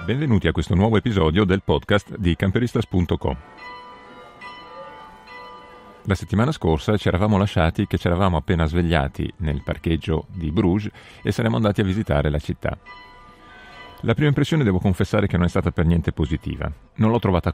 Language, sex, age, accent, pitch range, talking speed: Italian, male, 40-59, native, 80-95 Hz, 155 wpm